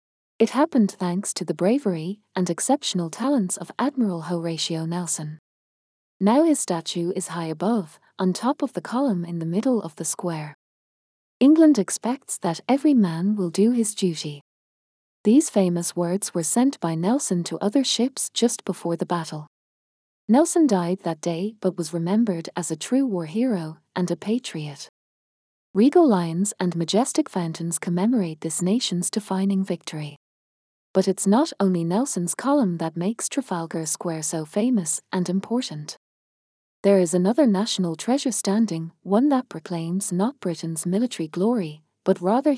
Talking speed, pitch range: 150 wpm, 170-225 Hz